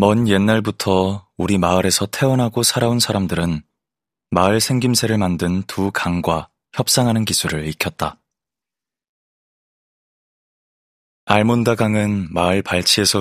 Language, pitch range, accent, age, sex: Korean, 85-105 Hz, native, 20-39, male